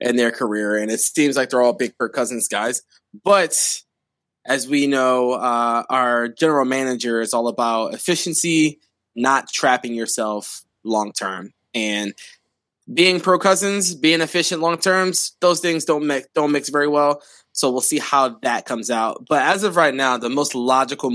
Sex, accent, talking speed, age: male, American, 175 wpm, 20-39